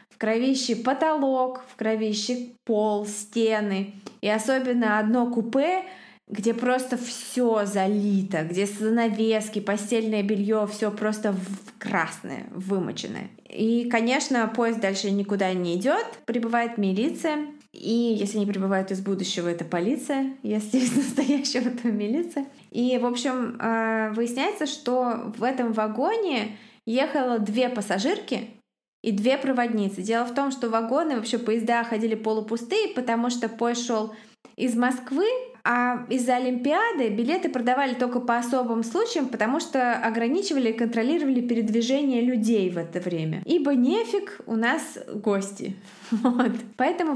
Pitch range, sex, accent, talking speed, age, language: 215-255 Hz, female, native, 125 wpm, 20-39, Russian